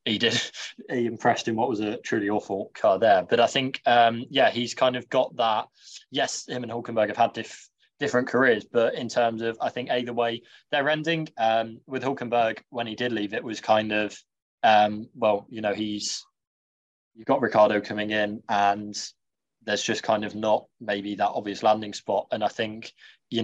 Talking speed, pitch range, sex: 195 wpm, 105-125 Hz, male